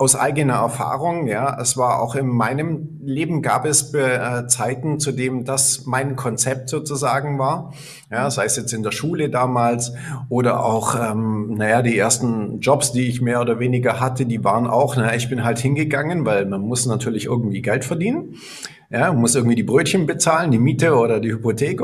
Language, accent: German, German